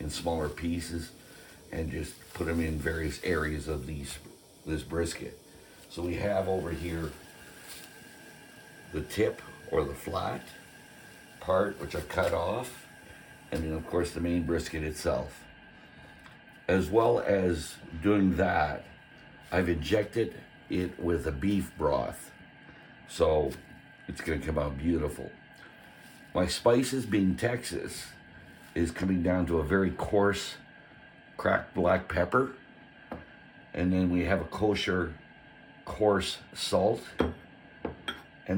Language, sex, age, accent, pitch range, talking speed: English, male, 60-79, American, 80-95 Hz, 125 wpm